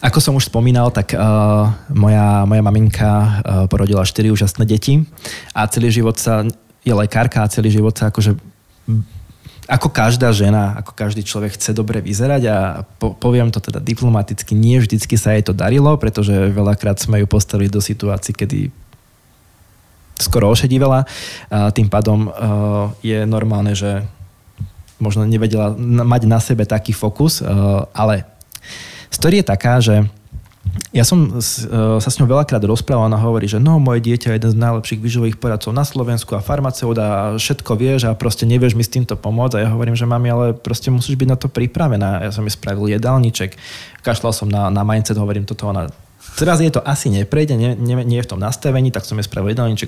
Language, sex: Slovak, male